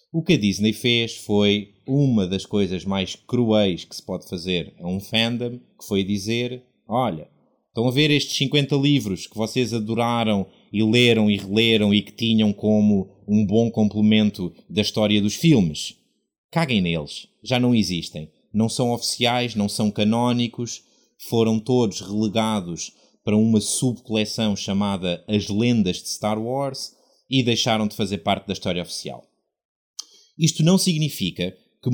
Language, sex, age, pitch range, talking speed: Portuguese, male, 20-39, 105-140 Hz, 155 wpm